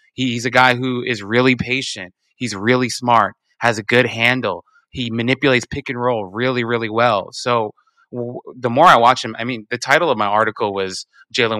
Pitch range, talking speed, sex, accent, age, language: 110-135 Hz, 190 wpm, male, American, 20-39, English